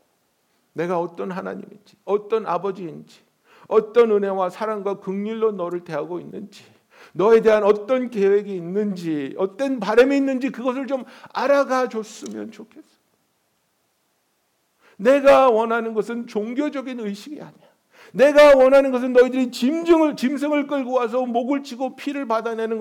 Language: Korean